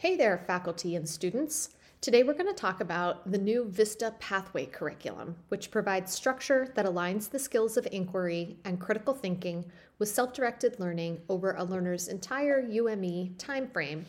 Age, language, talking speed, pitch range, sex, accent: 30-49, English, 160 wpm, 175-250 Hz, female, American